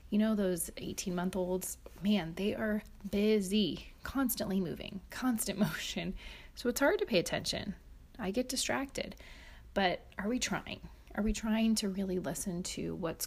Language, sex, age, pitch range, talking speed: English, female, 30-49, 175-220 Hz, 160 wpm